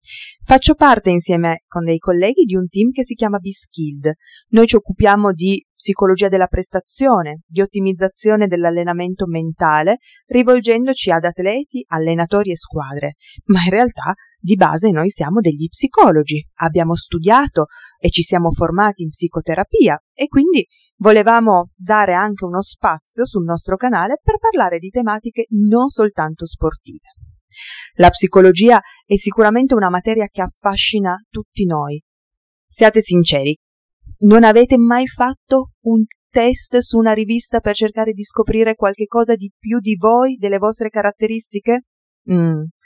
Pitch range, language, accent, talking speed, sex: 175-235 Hz, Italian, native, 140 wpm, female